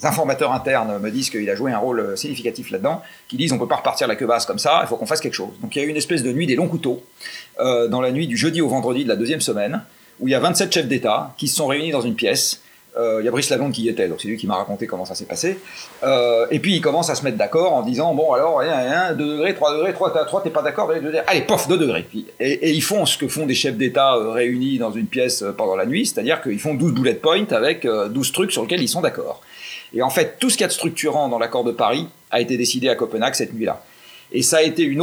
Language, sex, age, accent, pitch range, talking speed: French, male, 40-59, French, 125-165 Hz, 305 wpm